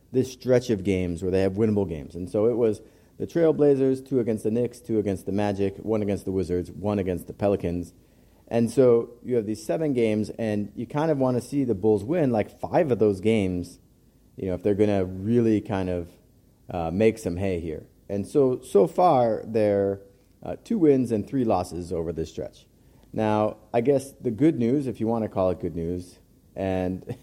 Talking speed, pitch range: 210 wpm, 95-120 Hz